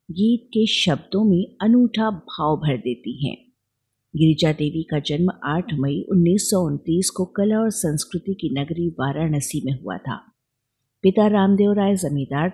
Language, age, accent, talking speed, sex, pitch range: Hindi, 50-69, native, 145 wpm, female, 145-190 Hz